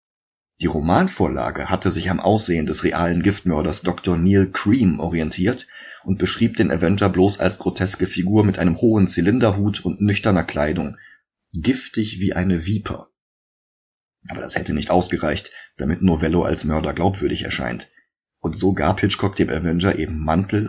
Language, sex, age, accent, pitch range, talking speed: German, male, 30-49, German, 85-105 Hz, 150 wpm